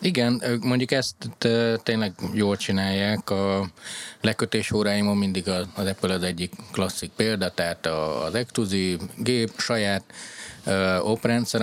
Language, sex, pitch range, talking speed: Hungarian, male, 95-120 Hz, 135 wpm